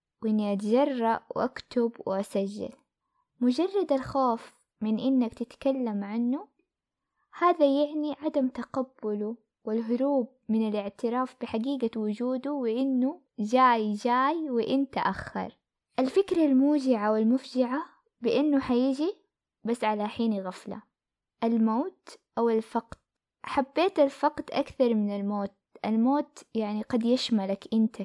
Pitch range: 220-275 Hz